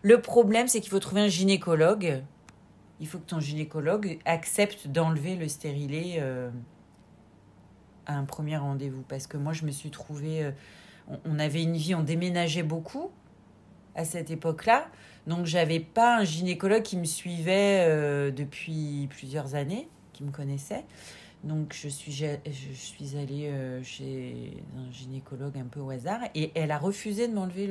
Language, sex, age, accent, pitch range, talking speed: French, female, 40-59, French, 140-170 Hz, 165 wpm